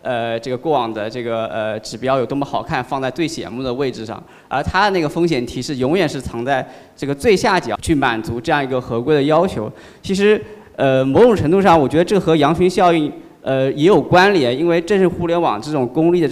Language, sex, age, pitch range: Chinese, male, 20-39, 115-145 Hz